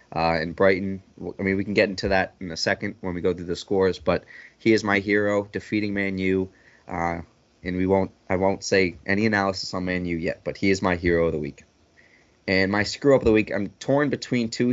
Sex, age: male, 20-39